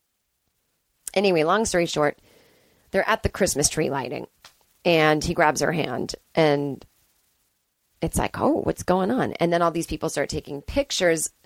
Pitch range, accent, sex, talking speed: 160-210 Hz, American, female, 155 wpm